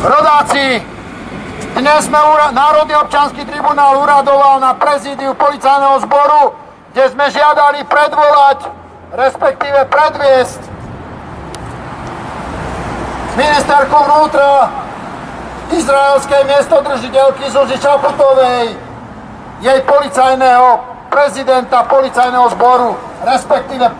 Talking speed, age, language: 75 wpm, 50-69, Czech